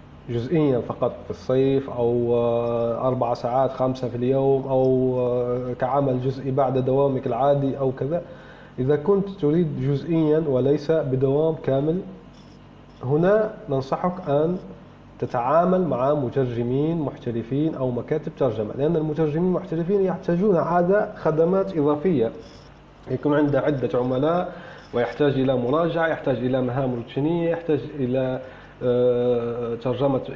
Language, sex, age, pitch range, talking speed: Arabic, male, 30-49, 130-165 Hz, 110 wpm